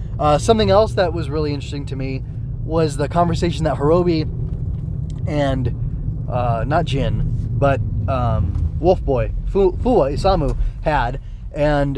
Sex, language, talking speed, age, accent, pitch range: male, English, 130 wpm, 20-39, American, 125-160 Hz